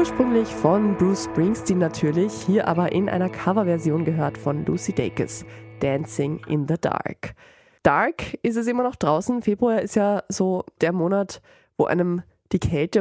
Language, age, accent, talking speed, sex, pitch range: German, 20-39, German, 160 wpm, female, 155-205 Hz